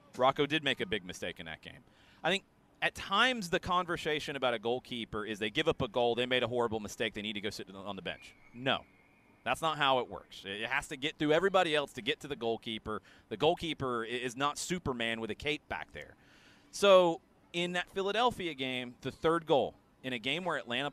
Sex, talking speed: male, 225 wpm